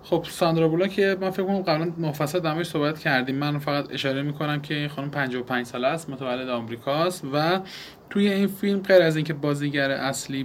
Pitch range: 135-180 Hz